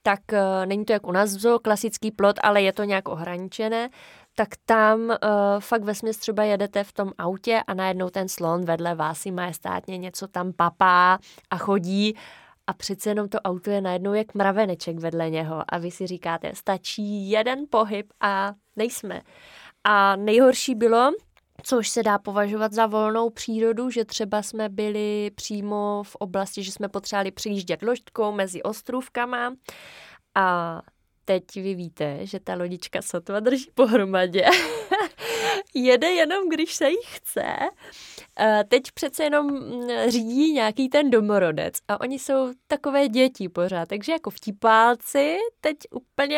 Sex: female